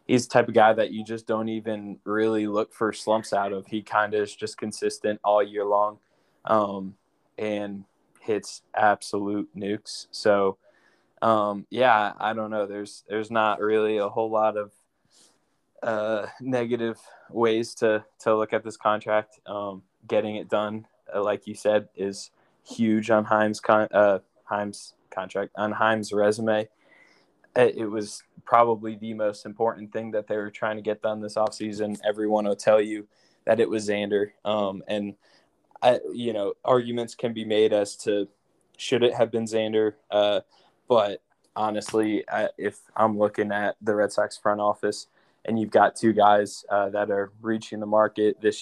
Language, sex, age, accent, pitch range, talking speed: English, male, 10-29, American, 105-110 Hz, 165 wpm